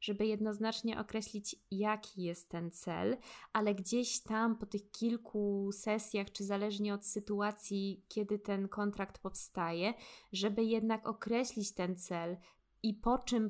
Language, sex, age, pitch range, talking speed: Polish, female, 20-39, 195-230 Hz, 135 wpm